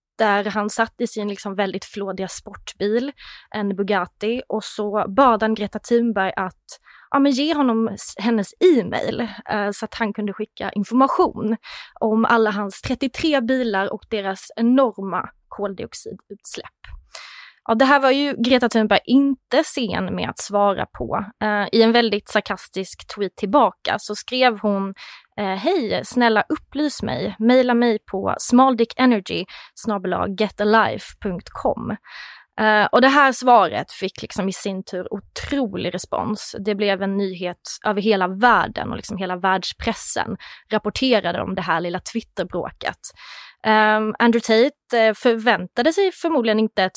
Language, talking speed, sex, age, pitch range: Swedish, 135 wpm, female, 20-39, 200-240 Hz